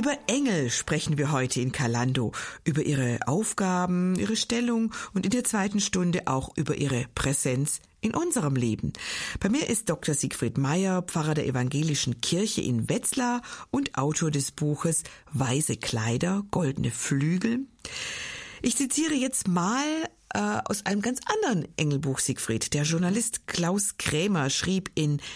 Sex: female